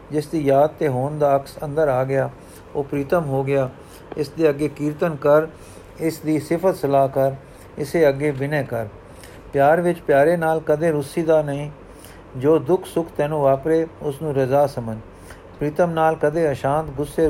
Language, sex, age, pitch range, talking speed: Punjabi, male, 50-69, 135-155 Hz, 165 wpm